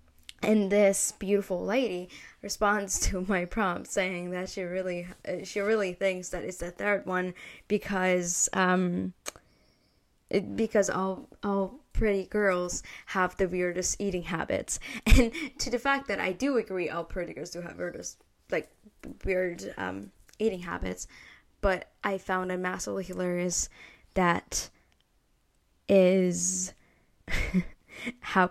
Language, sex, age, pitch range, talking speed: English, female, 10-29, 180-230 Hz, 130 wpm